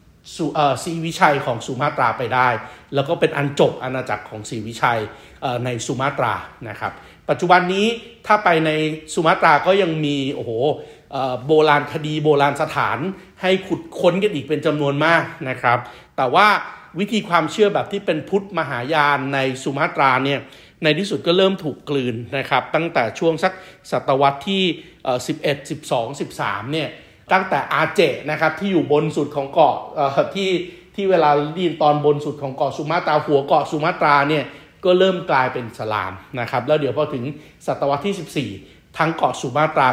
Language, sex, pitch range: Thai, male, 130-165 Hz